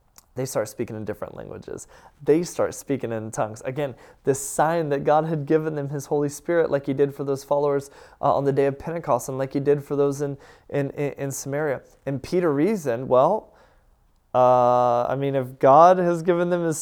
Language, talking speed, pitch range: English, 200 wpm, 140-175 Hz